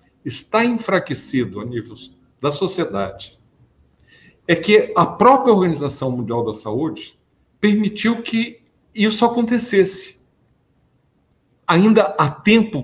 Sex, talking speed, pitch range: male, 100 wpm, 140-195 Hz